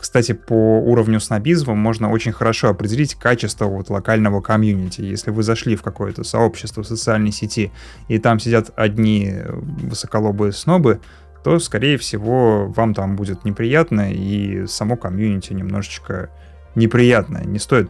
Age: 20-39